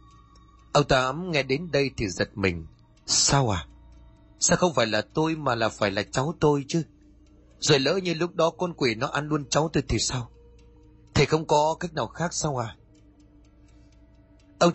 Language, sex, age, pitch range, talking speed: Vietnamese, male, 30-49, 110-155 Hz, 185 wpm